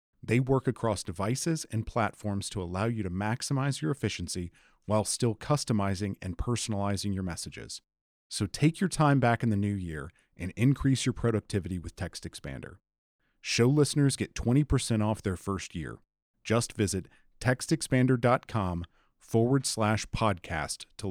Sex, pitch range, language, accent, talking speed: male, 95-125 Hz, English, American, 145 wpm